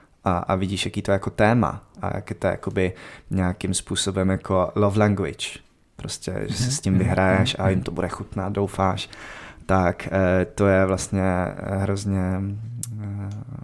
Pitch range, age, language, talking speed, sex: 95-105 Hz, 20-39, Czech, 140 wpm, male